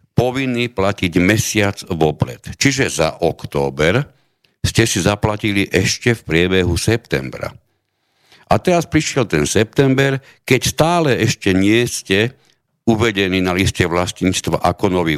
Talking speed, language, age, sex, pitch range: 120 wpm, Slovak, 60-79, male, 90-135 Hz